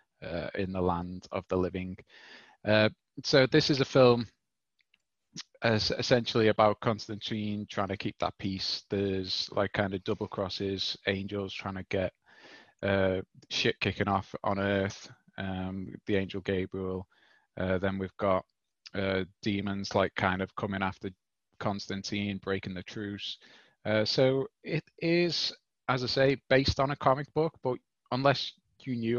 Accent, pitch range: British, 95-110 Hz